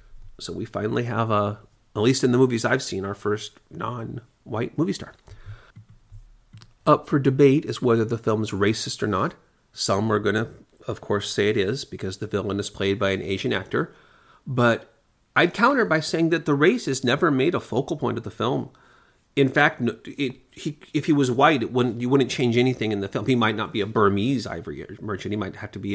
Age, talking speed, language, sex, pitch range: 40-59, 210 wpm, English, male, 110-135 Hz